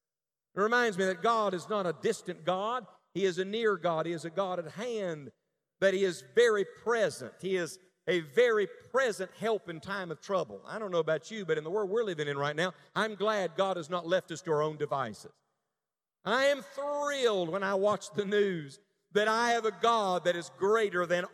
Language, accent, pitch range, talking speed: English, American, 165-205 Hz, 220 wpm